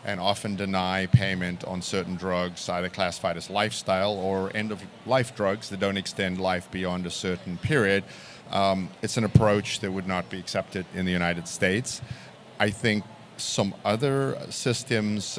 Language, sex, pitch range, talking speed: English, male, 90-105 Hz, 155 wpm